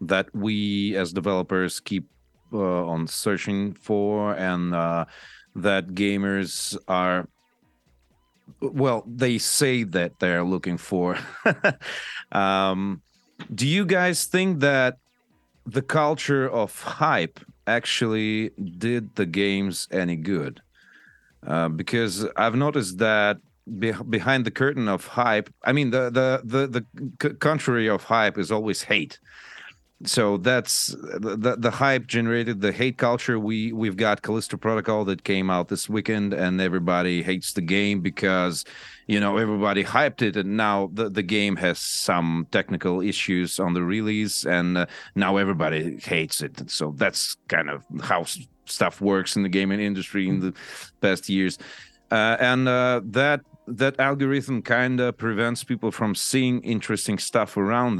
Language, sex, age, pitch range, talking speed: English, male, 40-59, 95-120 Hz, 140 wpm